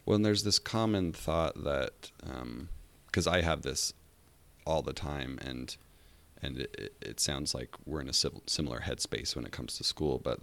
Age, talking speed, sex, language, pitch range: 30-49, 185 wpm, male, English, 70-80 Hz